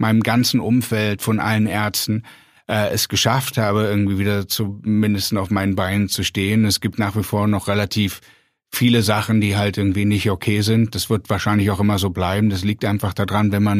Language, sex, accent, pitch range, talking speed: German, male, German, 105-115 Hz, 200 wpm